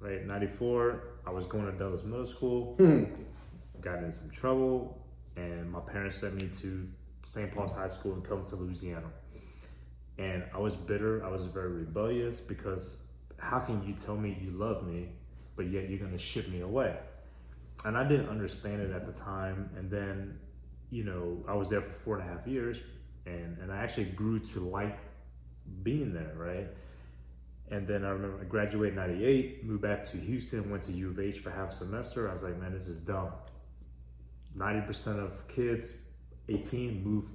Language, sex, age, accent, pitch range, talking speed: English, male, 20-39, American, 85-105 Hz, 185 wpm